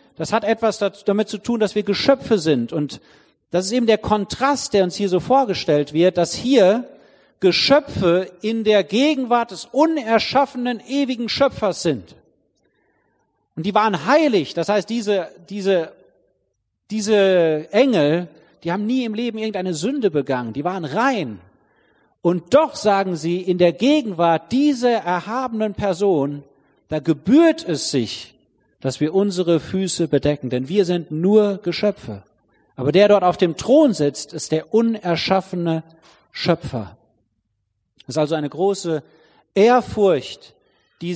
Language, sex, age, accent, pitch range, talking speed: German, male, 40-59, German, 155-215 Hz, 140 wpm